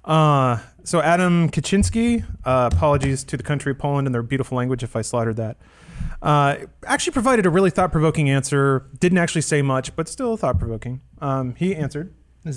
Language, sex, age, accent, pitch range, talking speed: English, male, 30-49, American, 125-170 Hz, 175 wpm